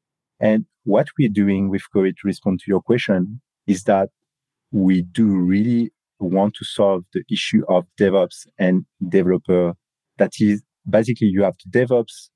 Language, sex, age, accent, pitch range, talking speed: English, male, 40-59, French, 95-115 Hz, 155 wpm